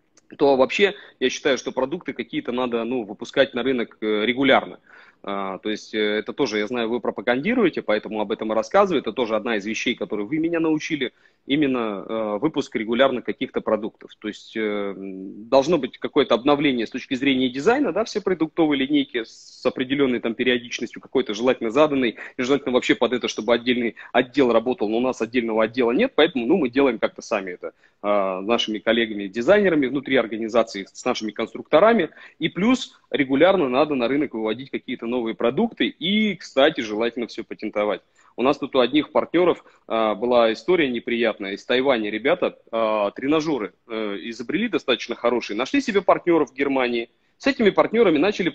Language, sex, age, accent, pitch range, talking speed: Russian, male, 30-49, native, 110-160 Hz, 170 wpm